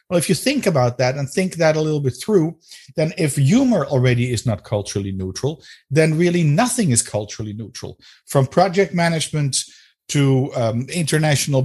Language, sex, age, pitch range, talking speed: English, male, 50-69, 125-175 Hz, 170 wpm